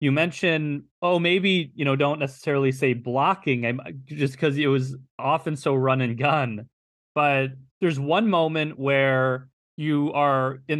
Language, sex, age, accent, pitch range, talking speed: English, male, 30-49, American, 130-160 Hz, 155 wpm